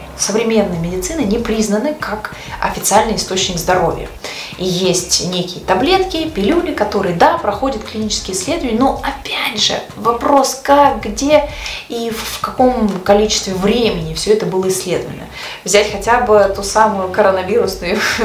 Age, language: 20-39, Russian